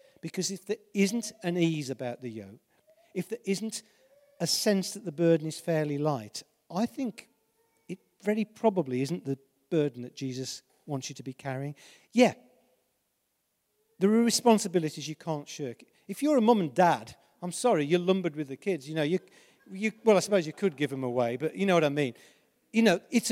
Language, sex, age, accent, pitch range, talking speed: English, male, 50-69, British, 140-195 Hz, 195 wpm